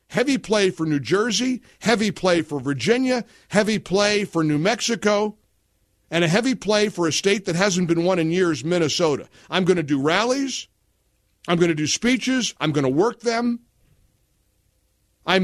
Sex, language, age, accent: male, English, 50-69, American